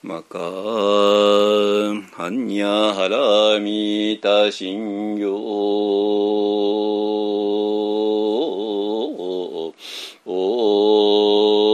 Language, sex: Japanese, male